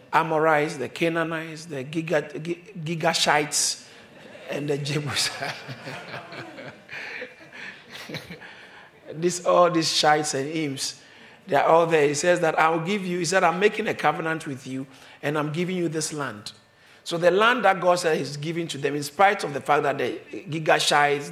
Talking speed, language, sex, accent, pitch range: 160 wpm, English, male, Nigerian, 150-190 Hz